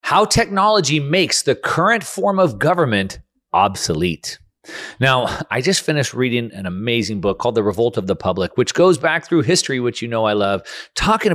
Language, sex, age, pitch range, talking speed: English, male, 40-59, 105-155 Hz, 180 wpm